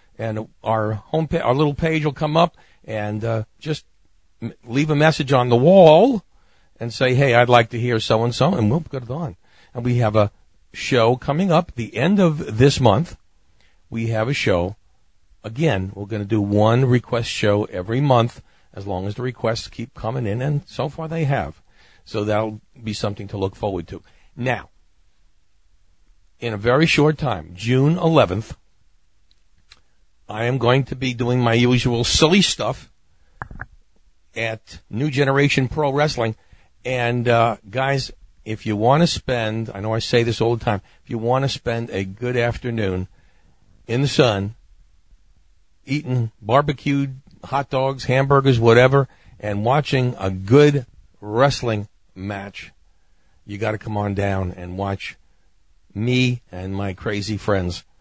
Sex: male